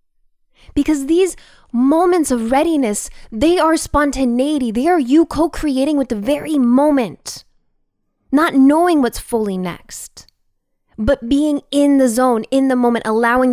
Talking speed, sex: 135 wpm, female